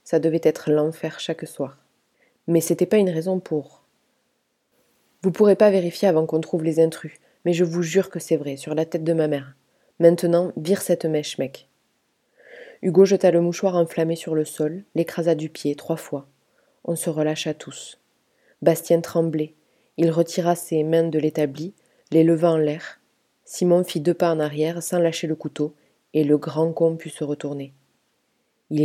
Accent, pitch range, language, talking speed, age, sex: French, 155-185 Hz, French, 185 wpm, 20-39, female